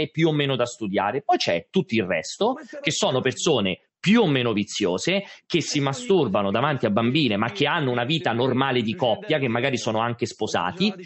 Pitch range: 135-190 Hz